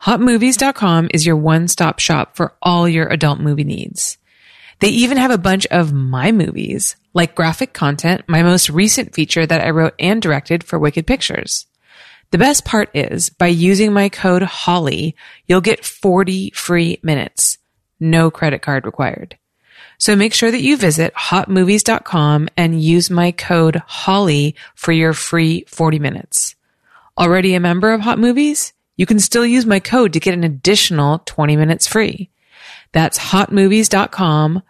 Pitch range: 160-200 Hz